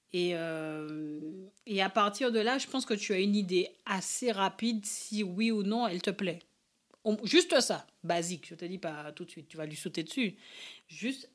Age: 40-59